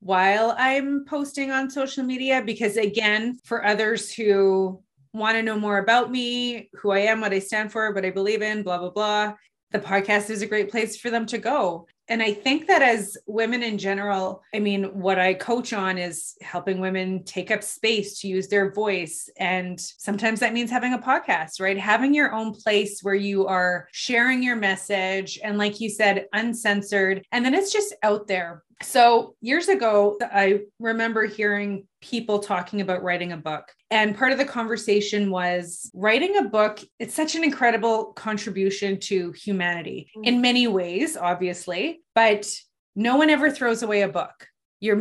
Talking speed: 180 wpm